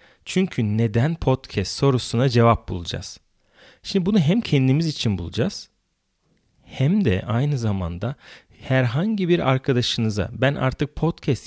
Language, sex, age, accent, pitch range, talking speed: Turkish, male, 40-59, native, 105-145 Hz, 115 wpm